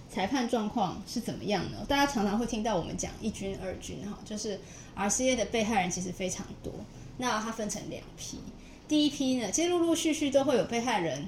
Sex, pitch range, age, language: female, 180-225 Hz, 20-39, Chinese